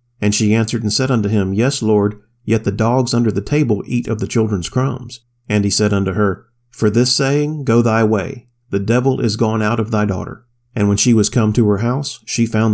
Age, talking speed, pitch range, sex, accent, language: 40-59, 230 wpm, 105-125 Hz, male, American, English